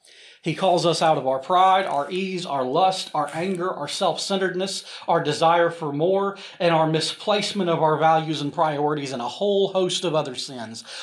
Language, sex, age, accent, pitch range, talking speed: English, male, 40-59, American, 135-170 Hz, 185 wpm